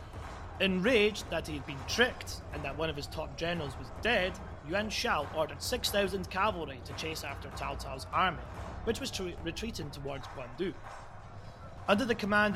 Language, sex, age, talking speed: English, male, 30-49, 160 wpm